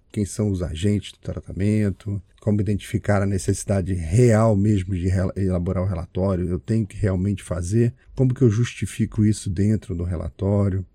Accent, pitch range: Brazilian, 95-110 Hz